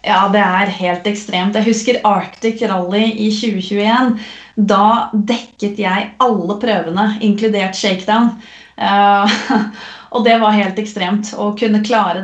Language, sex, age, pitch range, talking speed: Swedish, female, 30-49, 205-245 Hz, 130 wpm